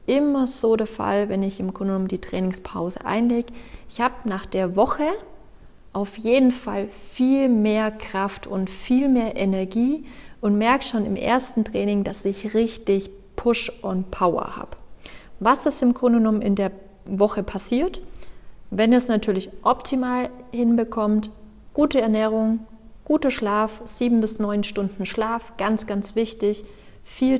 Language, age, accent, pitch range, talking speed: German, 30-49, German, 200-240 Hz, 140 wpm